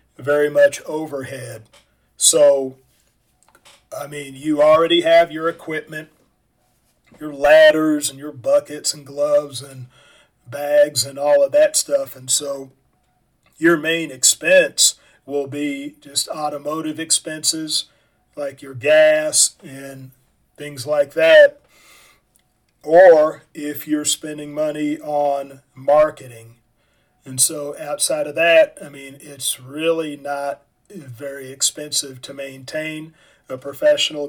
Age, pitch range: 40-59, 140-160 Hz